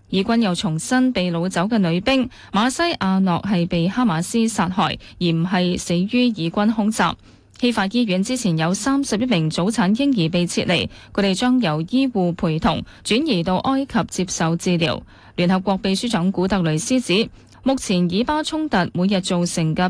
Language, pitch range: Chinese, 175-235 Hz